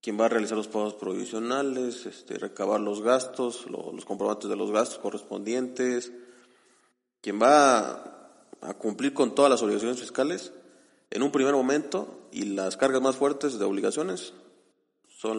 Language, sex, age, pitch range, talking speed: English, male, 30-49, 105-145 Hz, 155 wpm